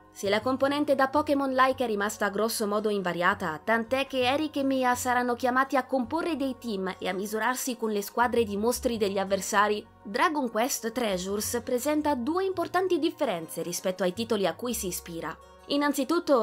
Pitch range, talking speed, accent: 195-270 Hz, 170 wpm, native